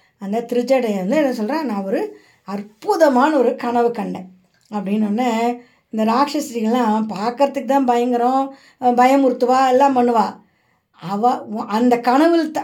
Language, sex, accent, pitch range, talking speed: Tamil, female, native, 200-270 Hz, 120 wpm